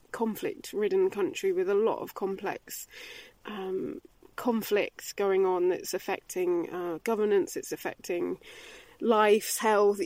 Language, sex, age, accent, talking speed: English, female, 20-39, British, 120 wpm